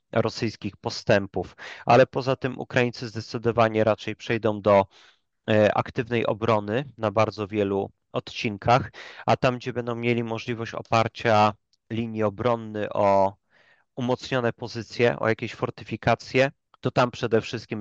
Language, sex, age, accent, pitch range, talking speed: Polish, male, 30-49, native, 105-120 Hz, 120 wpm